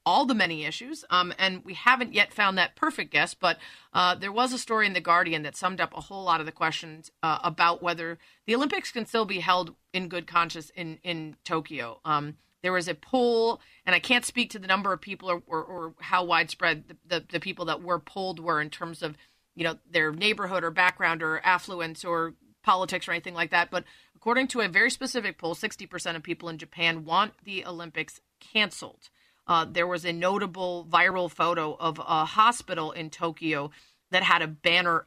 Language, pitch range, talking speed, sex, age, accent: English, 165-195 Hz, 210 wpm, female, 30-49, American